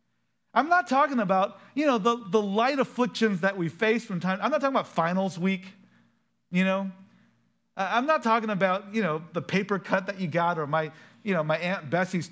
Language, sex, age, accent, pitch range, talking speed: English, male, 40-59, American, 140-205 Hz, 205 wpm